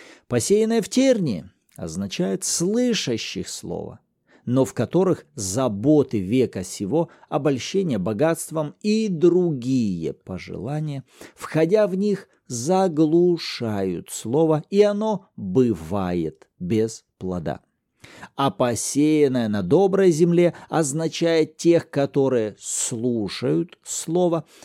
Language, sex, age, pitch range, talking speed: Russian, male, 50-69, 125-180 Hz, 90 wpm